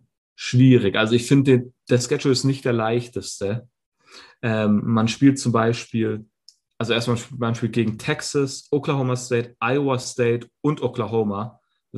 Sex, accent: male, German